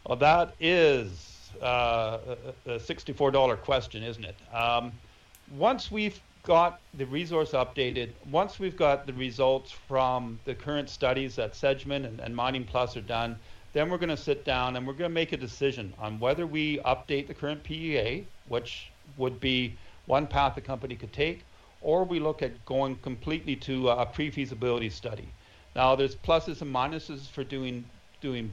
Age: 50-69